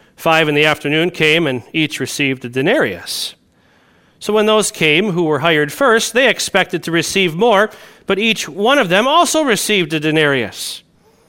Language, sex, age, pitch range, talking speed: English, male, 40-59, 140-200 Hz, 170 wpm